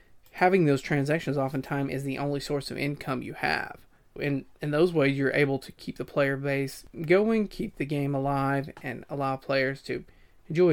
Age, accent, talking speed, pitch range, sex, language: 30-49, American, 185 wpm, 135-150 Hz, male, English